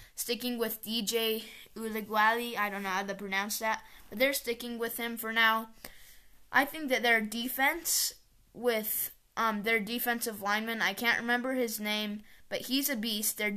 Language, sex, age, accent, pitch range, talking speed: English, female, 10-29, American, 210-245 Hz, 170 wpm